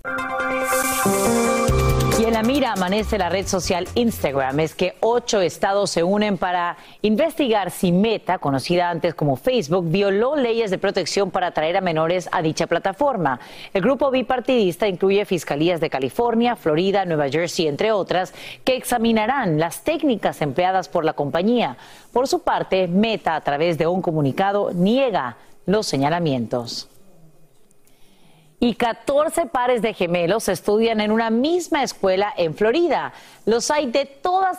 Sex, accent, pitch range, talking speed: female, Mexican, 175-240 Hz, 140 wpm